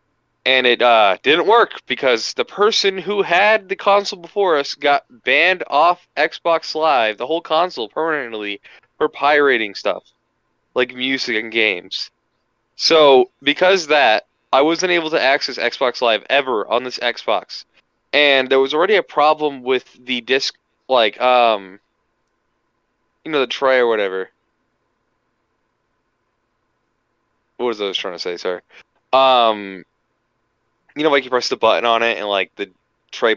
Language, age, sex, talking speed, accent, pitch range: English, 20-39, male, 150 wpm, American, 110-150 Hz